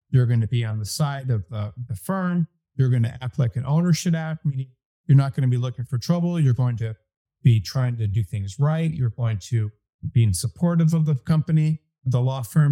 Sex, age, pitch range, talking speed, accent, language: male, 50-69, 115-155 Hz, 225 wpm, American, English